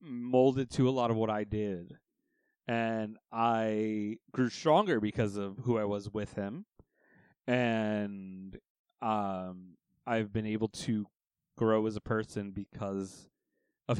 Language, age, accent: English, 30-49, American